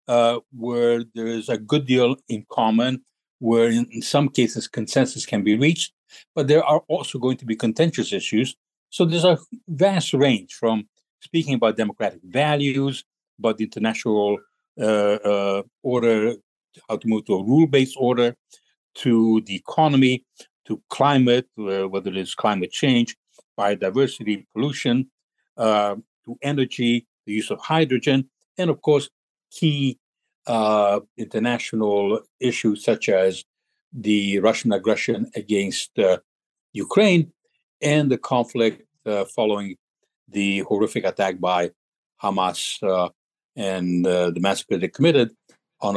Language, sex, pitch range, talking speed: English, male, 105-140 Hz, 130 wpm